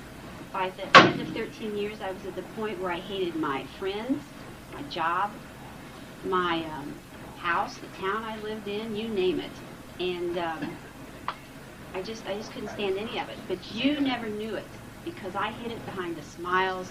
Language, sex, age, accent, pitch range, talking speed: English, female, 40-59, American, 180-215 Hz, 185 wpm